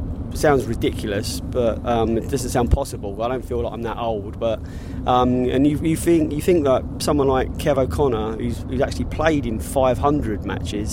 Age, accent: 20-39, British